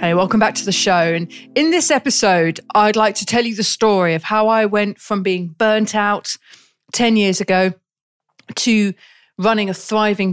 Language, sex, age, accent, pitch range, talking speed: English, female, 40-59, British, 175-215 Hz, 185 wpm